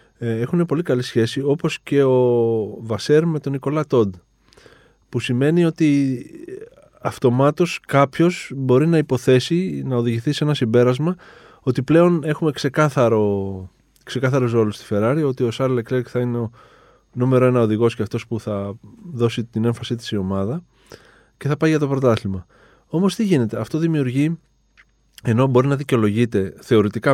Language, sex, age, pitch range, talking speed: Greek, male, 20-39, 110-145 Hz, 150 wpm